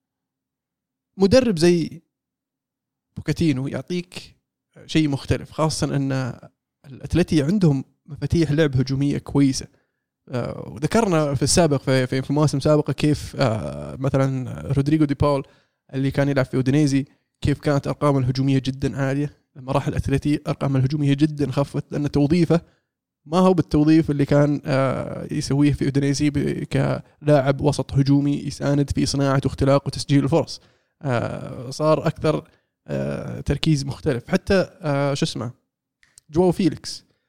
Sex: male